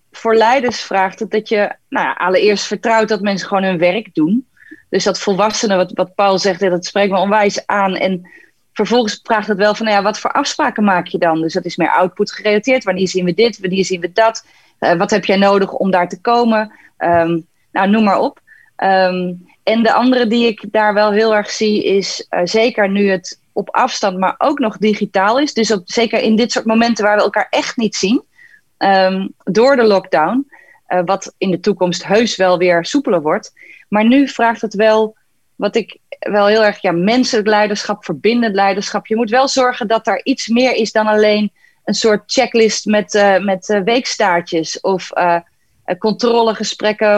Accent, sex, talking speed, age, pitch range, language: Dutch, female, 190 wpm, 30-49, 190-230 Hz, Dutch